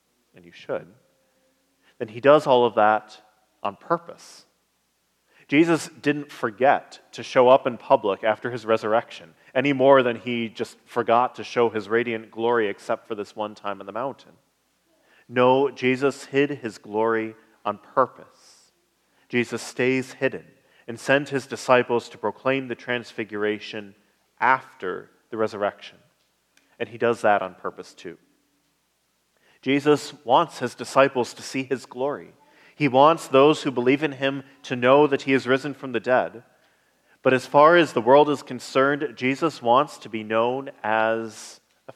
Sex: male